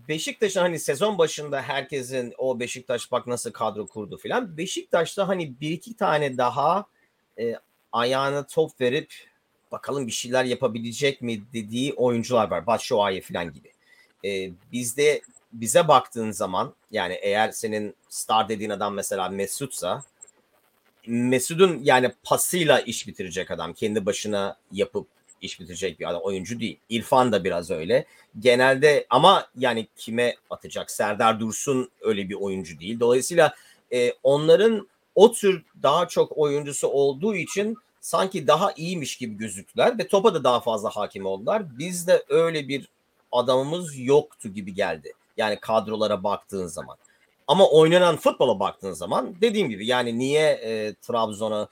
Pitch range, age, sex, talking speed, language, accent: 115-175 Hz, 40-59, male, 140 wpm, Turkish, native